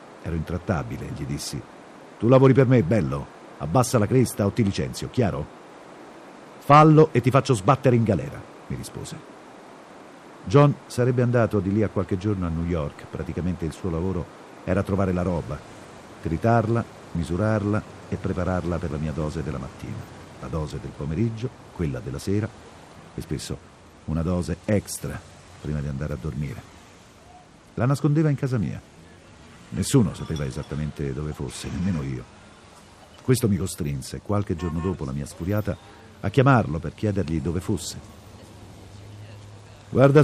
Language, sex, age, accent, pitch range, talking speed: Italian, male, 50-69, native, 85-125 Hz, 150 wpm